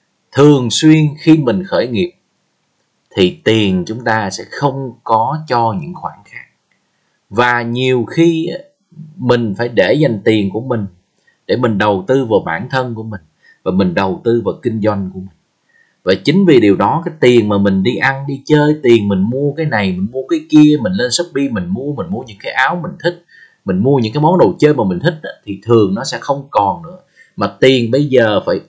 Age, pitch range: 20-39, 120-175 Hz